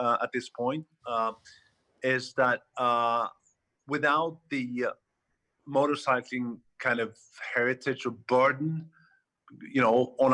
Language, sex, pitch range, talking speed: English, male, 120-150 Hz, 115 wpm